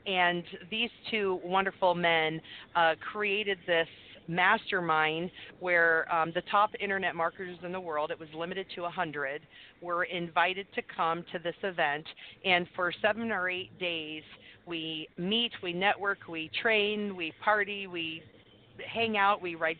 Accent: American